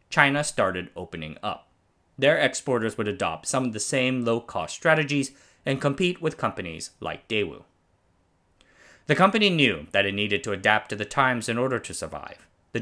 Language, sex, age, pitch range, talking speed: English, male, 30-49, 100-140 Hz, 175 wpm